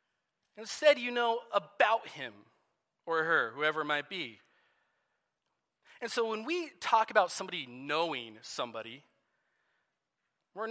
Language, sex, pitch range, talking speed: English, male, 185-240 Hz, 120 wpm